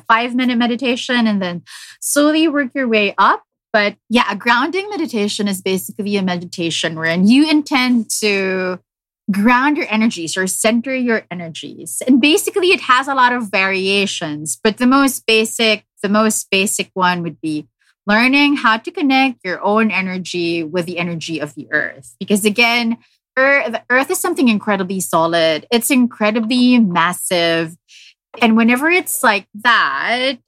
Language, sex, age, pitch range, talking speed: English, female, 20-39, 180-245 Hz, 150 wpm